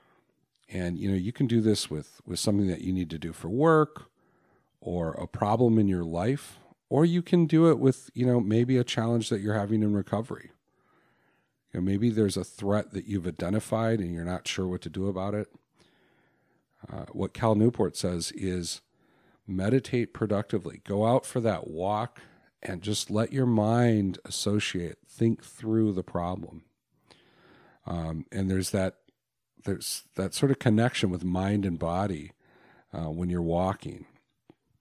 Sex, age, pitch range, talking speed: male, 40-59, 90-110 Hz, 165 wpm